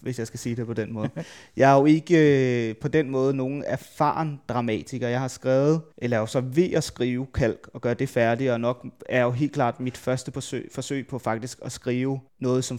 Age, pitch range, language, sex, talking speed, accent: 30-49, 115-140 Hz, Danish, male, 225 wpm, native